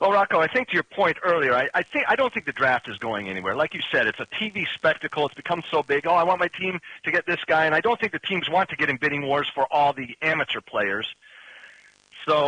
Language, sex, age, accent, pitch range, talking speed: English, male, 40-59, American, 120-160 Hz, 275 wpm